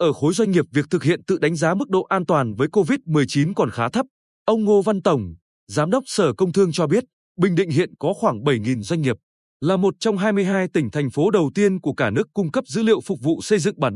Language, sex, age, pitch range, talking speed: Vietnamese, male, 20-39, 145-200 Hz, 255 wpm